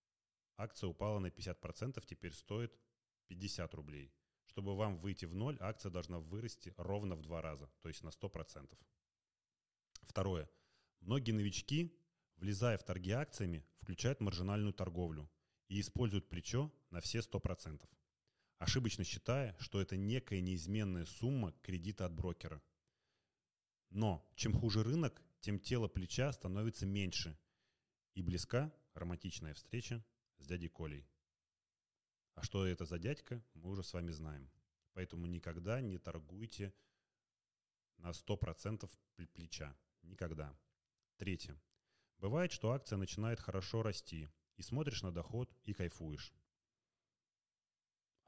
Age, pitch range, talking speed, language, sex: 30-49, 85-110 Hz, 120 wpm, Russian, male